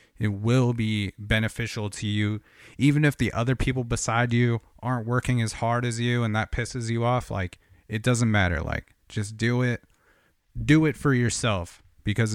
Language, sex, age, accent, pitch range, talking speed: English, male, 30-49, American, 100-120 Hz, 180 wpm